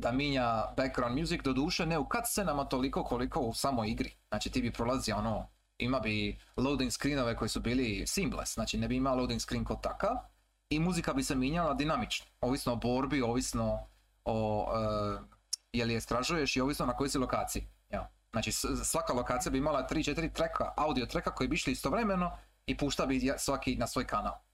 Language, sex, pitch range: Croatian, male, 115-150 Hz